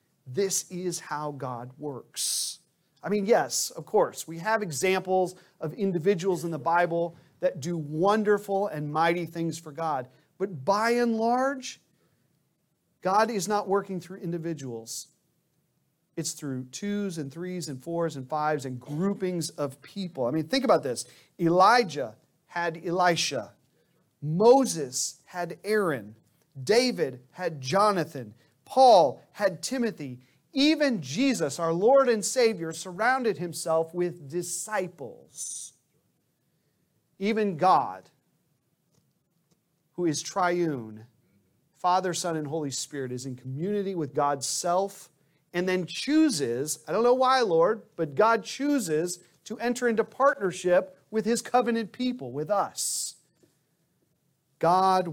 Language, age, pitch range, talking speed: English, 40-59, 150-200 Hz, 125 wpm